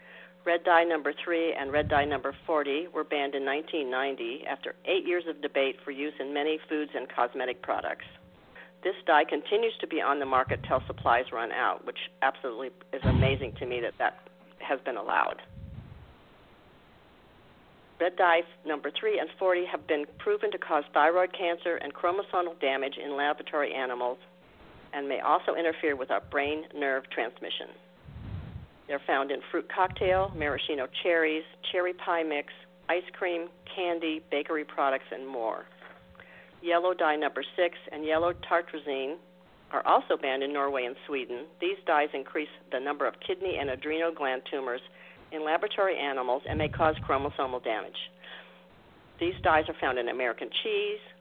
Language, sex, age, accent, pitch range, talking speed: English, female, 50-69, American, 140-180 Hz, 155 wpm